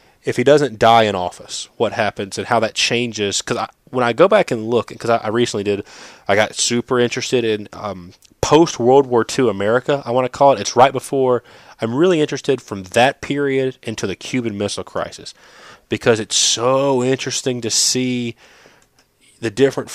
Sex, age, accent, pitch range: male, 20-39, American, 105-130 Hz